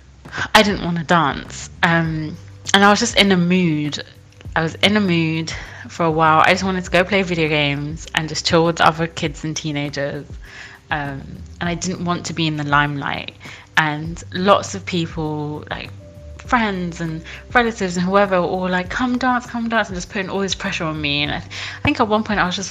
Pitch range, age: 145-180 Hz, 20-39